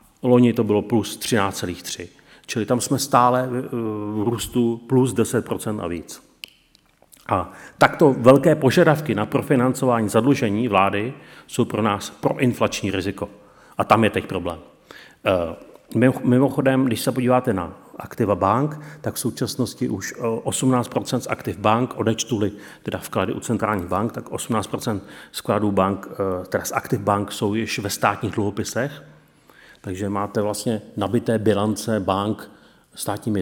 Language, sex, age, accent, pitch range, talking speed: Czech, male, 40-59, native, 100-130 Hz, 130 wpm